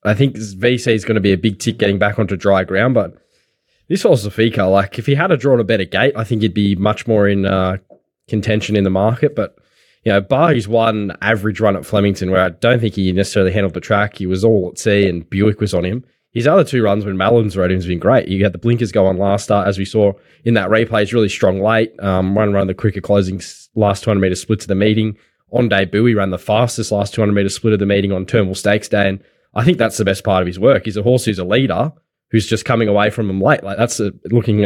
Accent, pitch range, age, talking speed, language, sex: Australian, 95-115 Hz, 10-29, 265 wpm, English, male